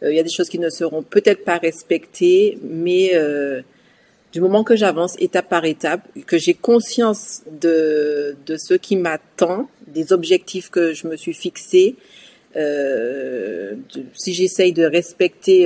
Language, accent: French, French